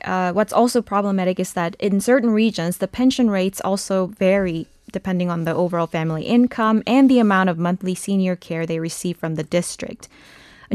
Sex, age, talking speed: female, 20-39, 185 wpm